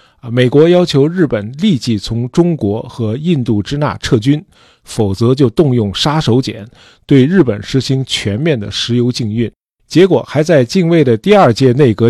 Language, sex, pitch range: Chinese, male, 110-145 Hz